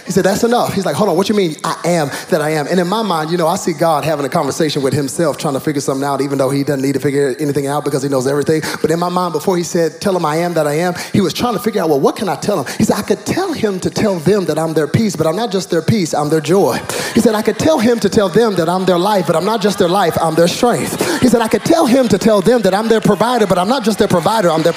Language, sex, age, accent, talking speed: English, male, 30-49, American, 335 wpm